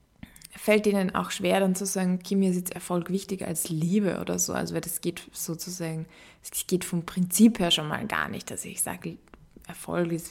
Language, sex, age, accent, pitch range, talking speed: German, female, 20-39, German, 180-210 Hz, 200 wpm